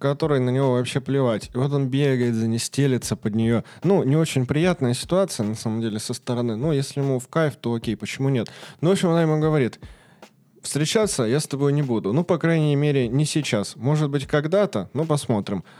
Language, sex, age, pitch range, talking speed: Russian, male, 20-39, 115-145 Hz, 215 wpm